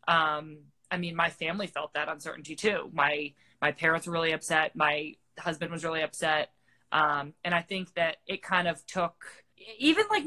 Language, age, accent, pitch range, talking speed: English, 20-39, American, 155-180 Hz, 180 wpm